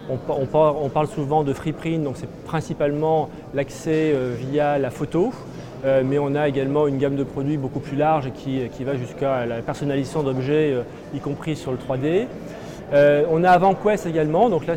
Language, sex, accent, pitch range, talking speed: French, male, French, 135-160 Hz, 165 wpm